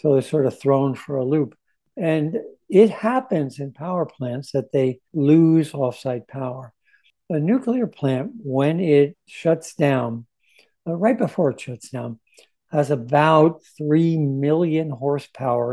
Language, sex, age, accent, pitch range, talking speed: English, male, 60-79, American, 130-160 Hz, 135 wpm